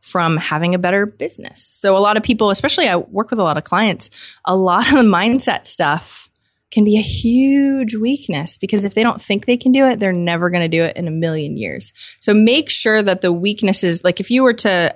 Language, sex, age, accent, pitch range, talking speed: English, female, 20-39, American, 170-220 Hz, 235 wpm